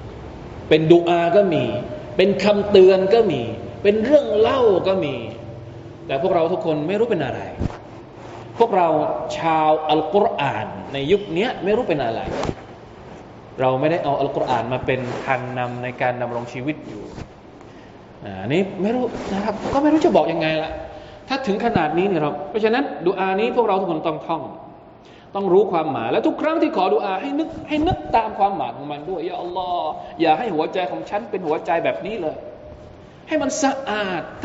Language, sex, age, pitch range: Thai, male, 20-39, 130-205 Hz